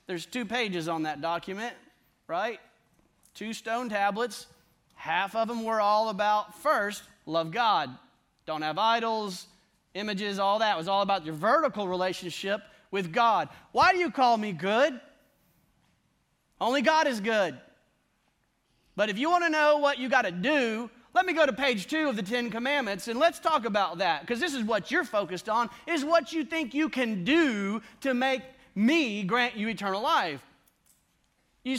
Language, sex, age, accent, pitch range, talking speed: English, male, 30-49, American, 195-275 Hz, 175 wpm